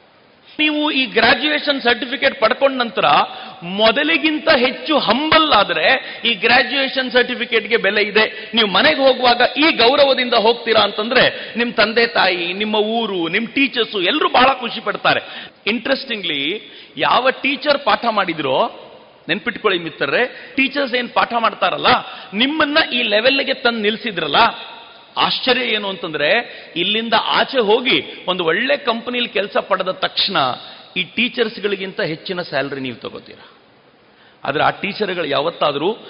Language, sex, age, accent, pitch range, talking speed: Kannada, male, 40-59, native, 185-260 Hz, 120 wpm